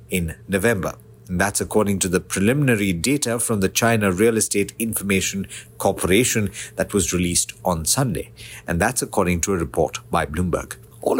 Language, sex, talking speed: English, male, 155 wpm